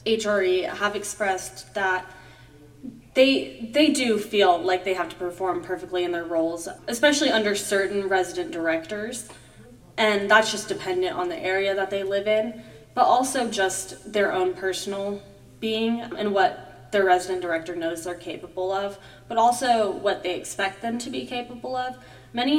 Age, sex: 20-39, female